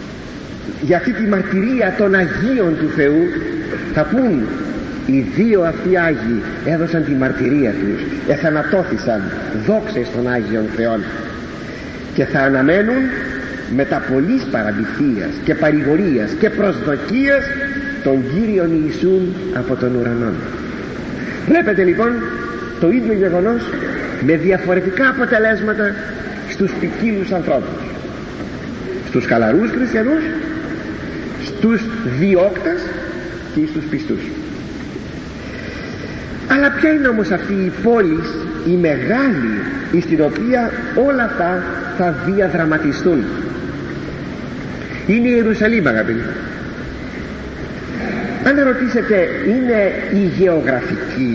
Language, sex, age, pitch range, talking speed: Greek, male, 50-69, 165-260 Hz, 95 wpm